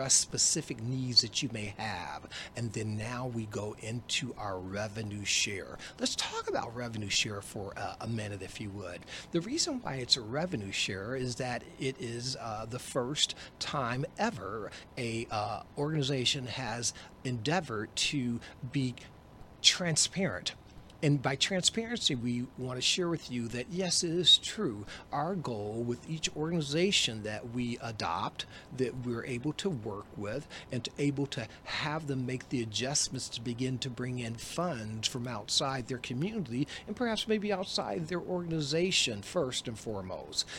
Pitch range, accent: 115-155 Hz, American